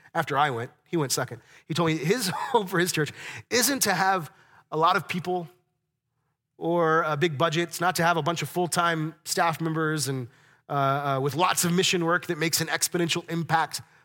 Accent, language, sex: American, English, male